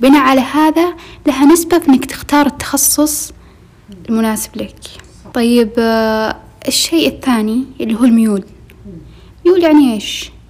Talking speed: 115 wpm